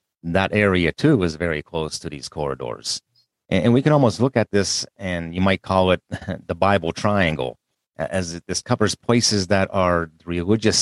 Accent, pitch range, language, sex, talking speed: American, 80-100 Hz, English, male, 170 wpm